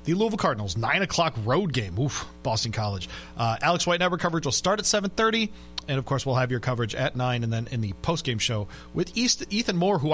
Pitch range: 100-150 Hz